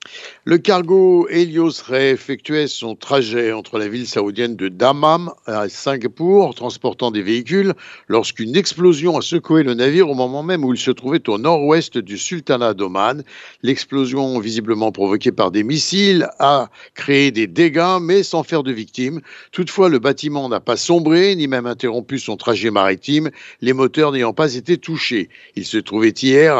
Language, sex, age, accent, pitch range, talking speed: Italian, male, 60-79, French, 120-165 Hz, 160 wpm